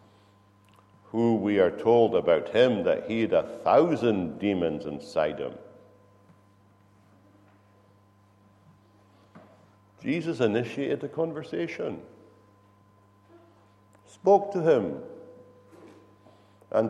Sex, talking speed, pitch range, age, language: male, 80 wpm, 100-105 Hz, 60-79, English